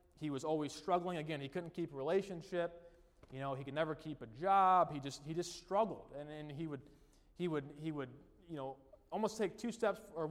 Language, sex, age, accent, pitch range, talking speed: English, male, 20-39, American, 145-185 Hz, 220 wpm